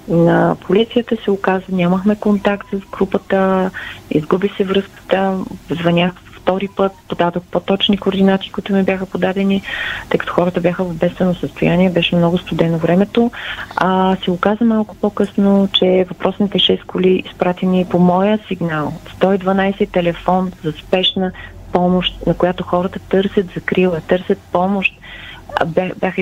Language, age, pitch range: Bulgarian, 30-49, 180-205 Hz